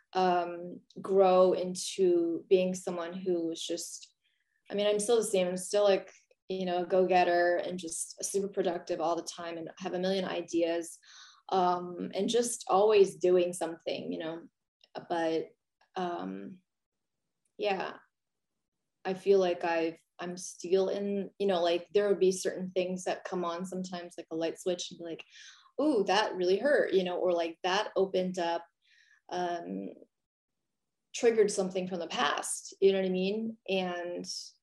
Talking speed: 165 wpm